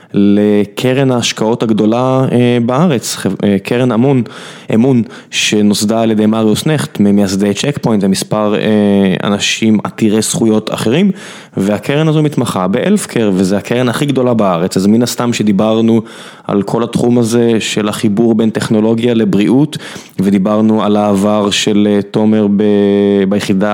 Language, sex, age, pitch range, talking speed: Hebrew, male, 20-39, 105-130 Hz, 125 wpm